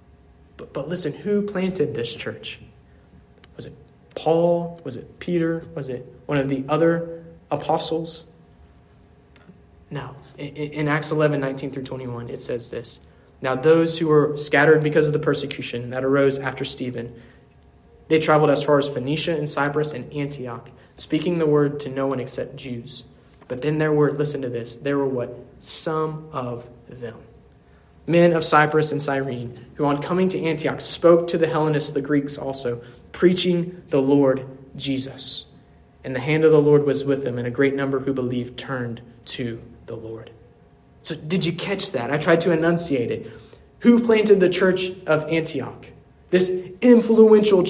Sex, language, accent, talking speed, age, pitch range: male, English, American, 165 wpm, 20-39, 130-165 Hz